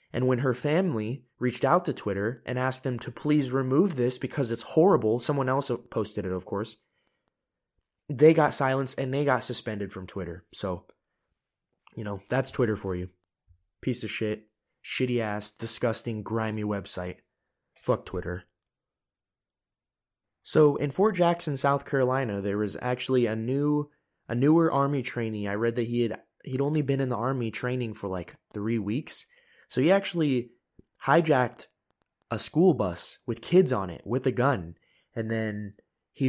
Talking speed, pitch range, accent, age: 160 wpm, 105-135 Hz, American, 20-39